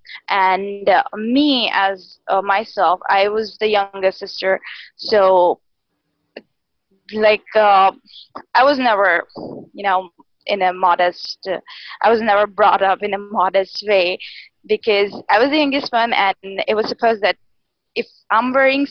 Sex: female